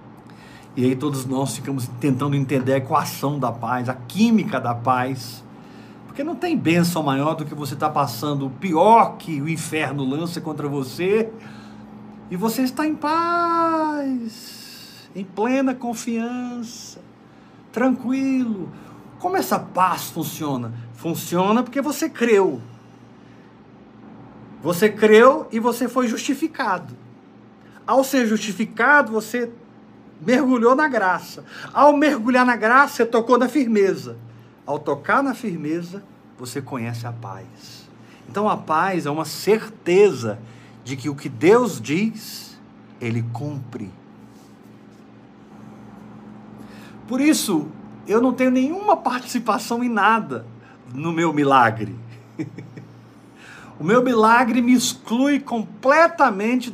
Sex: male